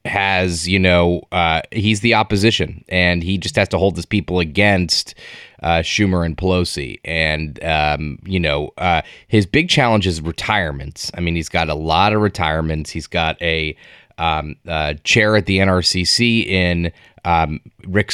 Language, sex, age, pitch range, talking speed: English, male, 20-39, 90-115 Hz, 165 wpm